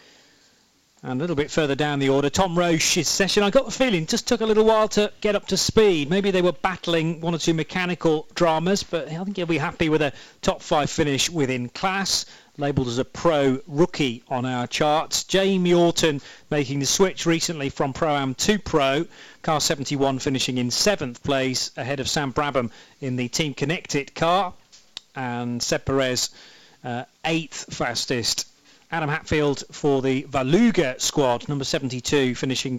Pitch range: 135-175 Hz